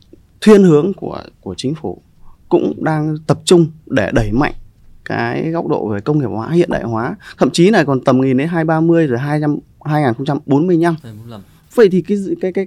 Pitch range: 120-170 Hz